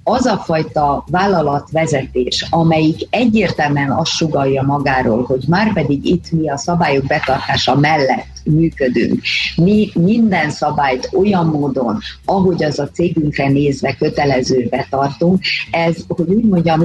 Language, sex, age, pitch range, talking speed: Hungarian, female, 50-69, 140-180 Hz, 120 wpm